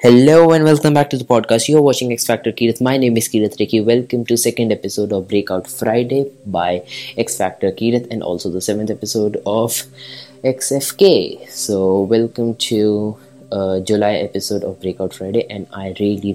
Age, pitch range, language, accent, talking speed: 20-39, 100-115 Hz, English, Indian, 165 wpm